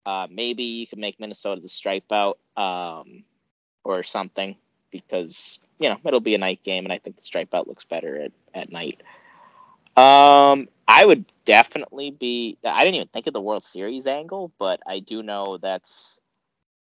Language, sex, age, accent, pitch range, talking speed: English, male, 20-39, American, 95-140 Hz, 175 wpm